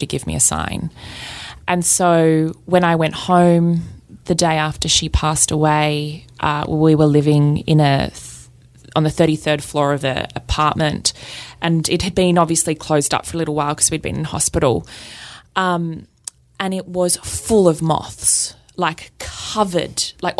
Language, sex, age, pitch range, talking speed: English, female, 20-39, 150-180 Hz, 165 wpm